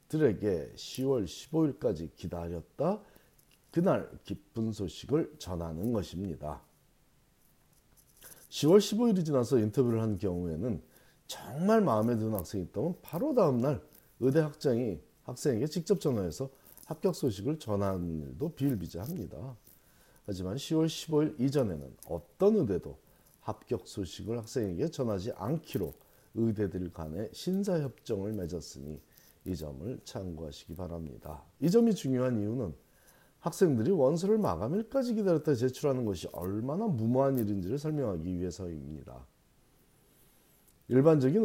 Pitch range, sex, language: 90-140 Hz, male, Korean